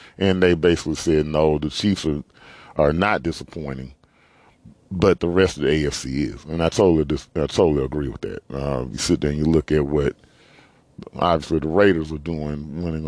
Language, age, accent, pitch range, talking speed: English, 40-59, American, 75-90 Hz, 195 wpm